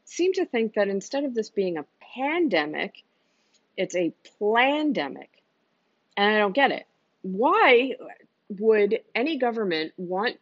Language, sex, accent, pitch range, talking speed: English, female, American, 165-220 Hz, 130 wpm